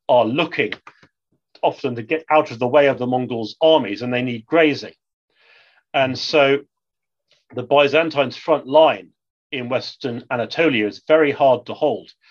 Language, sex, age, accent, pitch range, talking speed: English, male, 40-59, British, 120-145 Hz, 150 wpm